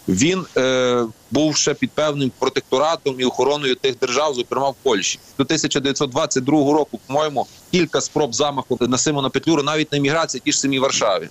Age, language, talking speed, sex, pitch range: 30-49, Ukrainian, 165 wpm, male, 125-150 Hz